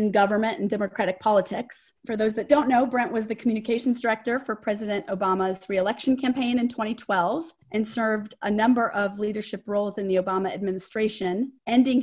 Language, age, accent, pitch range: English, 30-49, American, 200-255 Hz